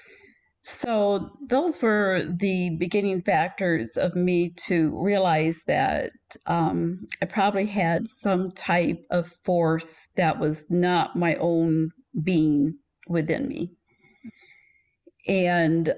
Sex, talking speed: female, 105 wpm